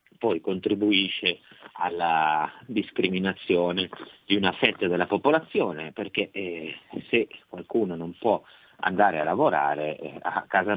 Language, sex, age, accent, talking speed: Italian, male, 30-49, native, 115 wpm